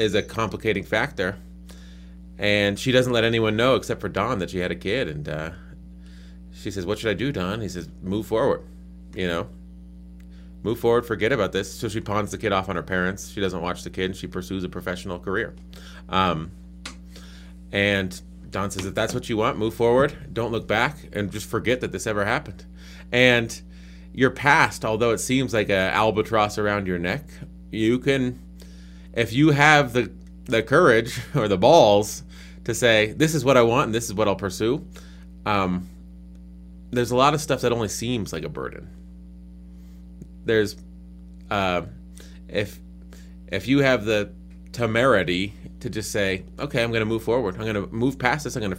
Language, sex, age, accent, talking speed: English, male, 30-49, American, 185 wpm